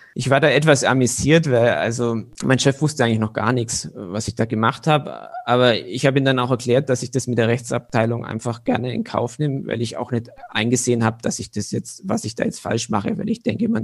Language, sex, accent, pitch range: German, male, German, 115-150 Hz